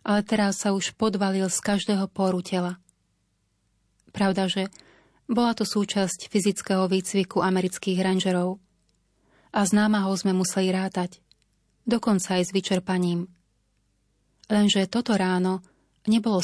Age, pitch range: 30-49, 180-200 Hz